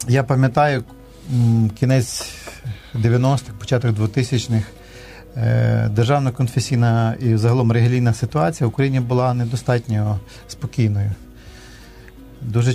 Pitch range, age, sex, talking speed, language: 110-125 Hz, 40-59, male, 80 wpm, Ukrainian